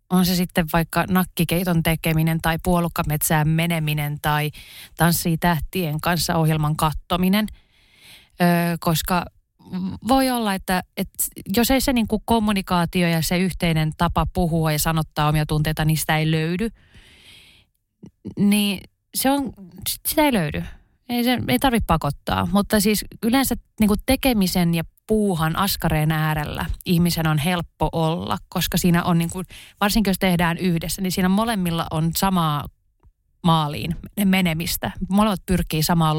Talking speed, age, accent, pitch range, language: 135 wpm, 30-49, native, 155-195 Hz, Finnish